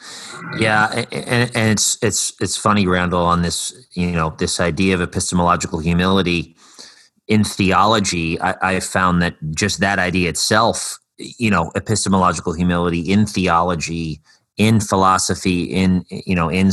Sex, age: male, 30-49